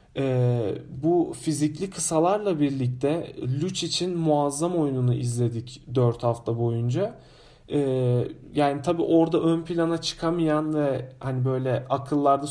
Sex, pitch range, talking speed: male, 135-175 Hz, 115 wpm